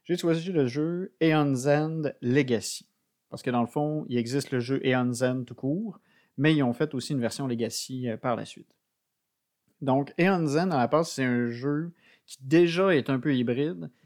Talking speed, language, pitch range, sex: 230 wpm, French, 125-150 Hz, male